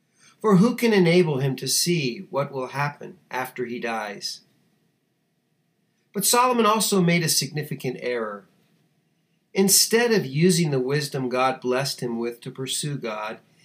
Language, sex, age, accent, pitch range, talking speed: English, male, 50-69, American, 130-175 Hz, 140 wpm